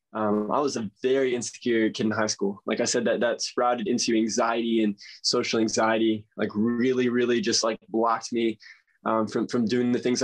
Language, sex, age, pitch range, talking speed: English, male, 20-39, 110-125 Hz, 200 wpm